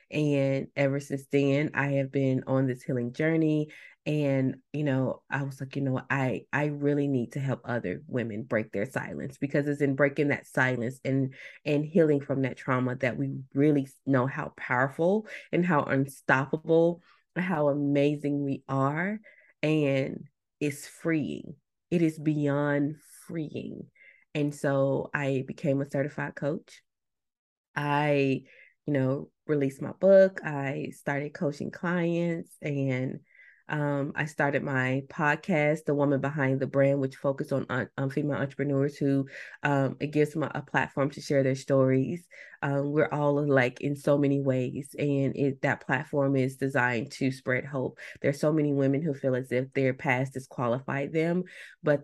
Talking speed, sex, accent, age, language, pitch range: 160 wpm, female, American, 20-39, English, 135-150 Hz